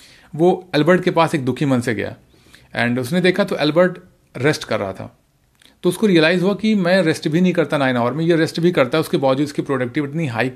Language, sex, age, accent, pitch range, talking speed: Hindi, male, 40-59, native, 130-175 Hz, 235 wpm